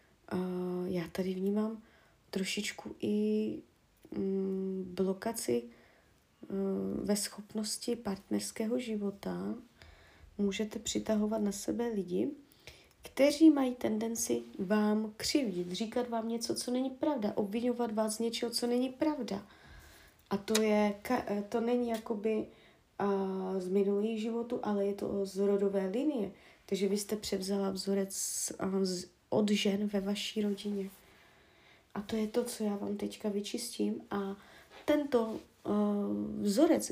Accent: native